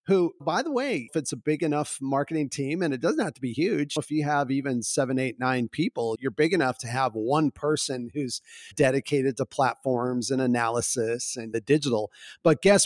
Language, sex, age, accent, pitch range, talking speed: English, male, 40-59, American, 125-155 Hz, 205 wpm